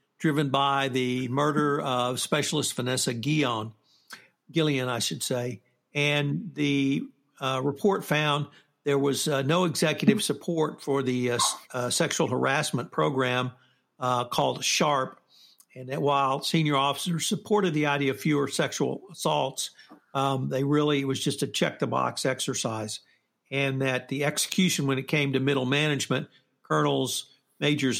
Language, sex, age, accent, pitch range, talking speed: English, male, 60-79, American, 130-150 Hz, 145 wpm